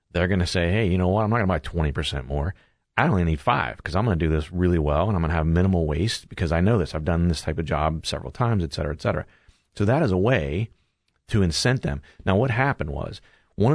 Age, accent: 40-59, American